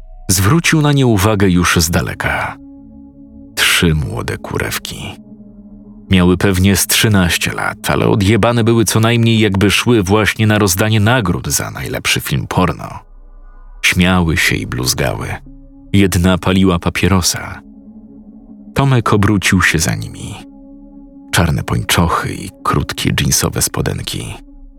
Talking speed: 115 wpm